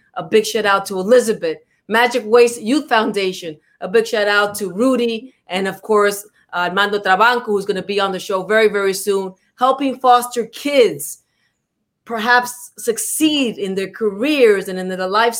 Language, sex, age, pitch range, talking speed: English, female, 30-49, 200-240 Hz, 170 wpm